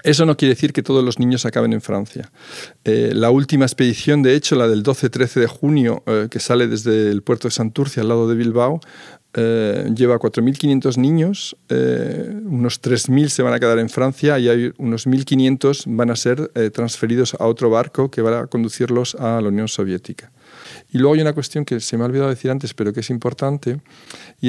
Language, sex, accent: French, male, Spanish